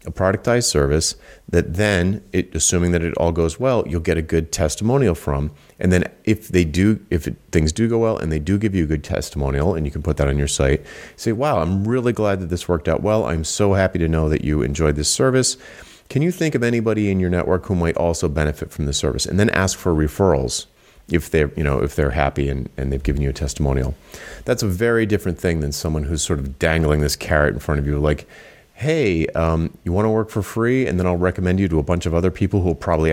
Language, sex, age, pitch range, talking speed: English, male, 30-49, 75-105 Hz, 250 wpm